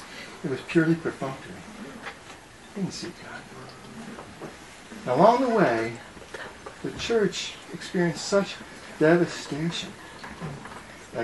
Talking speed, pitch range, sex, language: 90 wpm, 130-185 Hz, male, English